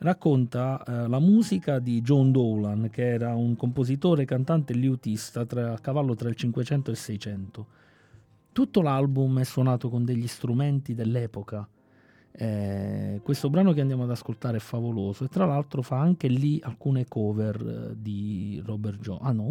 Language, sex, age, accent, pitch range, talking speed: Italian, male, 30-49, native, 105-130 Hz, 165 wpm